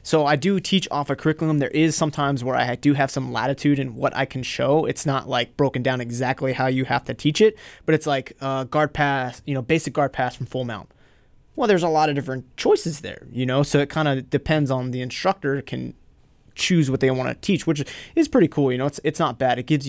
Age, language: 20-39, English